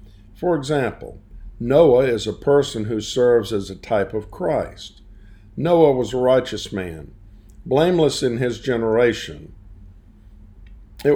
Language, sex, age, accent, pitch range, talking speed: English, male, 50-69, American, 100-125 Hz, 125 wpm